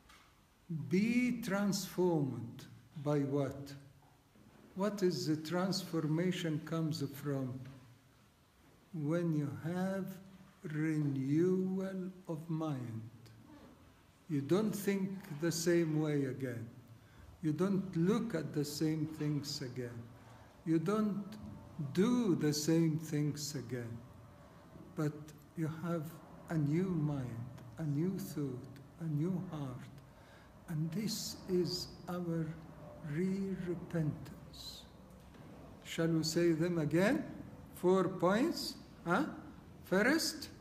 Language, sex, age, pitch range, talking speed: English, male, 60-79, 140-185 Hz, 95 wpm